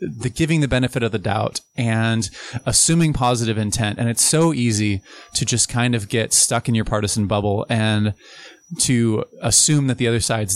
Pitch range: 105-130 Hz